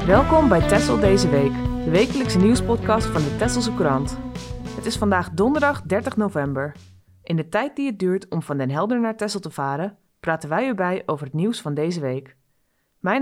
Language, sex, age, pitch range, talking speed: Dutch, female, 20-39, 150-215 Hz, 195 wpm